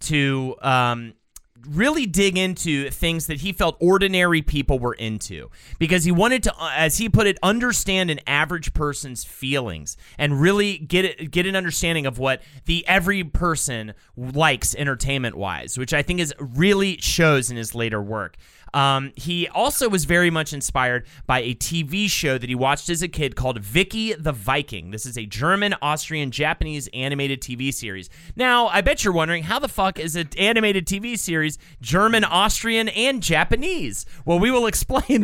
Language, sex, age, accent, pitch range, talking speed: English, male, 30-49, American, 130-190 Hz, 165 wpm